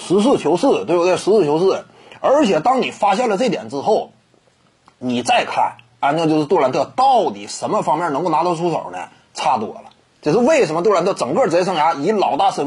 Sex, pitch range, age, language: male, 185-290 Hz, 30-49, Chinese